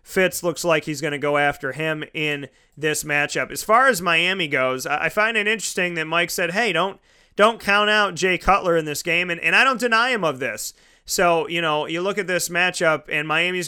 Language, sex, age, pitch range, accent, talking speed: English, male, 30-49, 155-185 Hz, American, 230 wpm